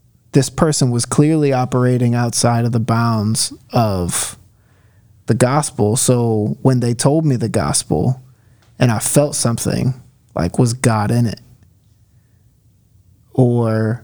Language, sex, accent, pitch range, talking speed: English, male, American, 115-130 Hz, 125 wpm